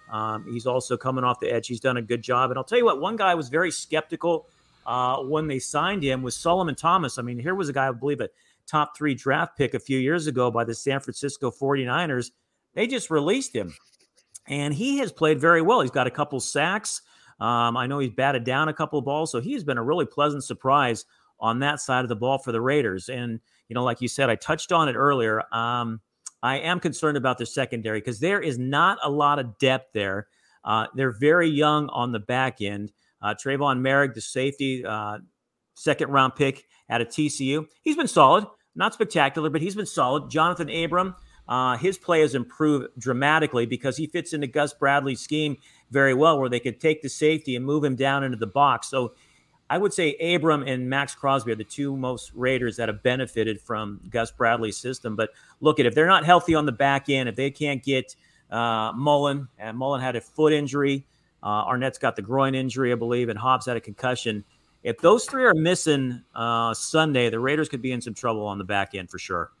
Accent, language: American, English